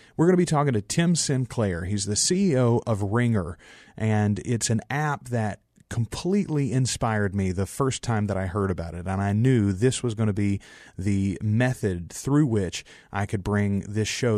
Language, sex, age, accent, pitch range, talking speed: English, male, 30-49, American, 100-130 Hz, 190 wpm